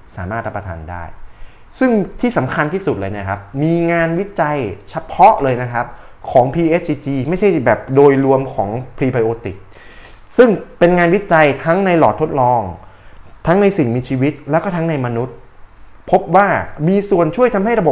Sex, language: male, Thai